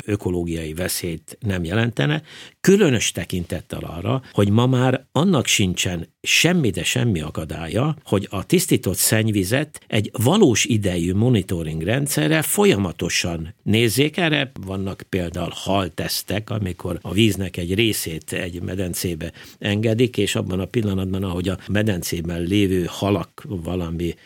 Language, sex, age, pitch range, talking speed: Hungarian, male, 60-79, 90-115 Hz, 120 wpm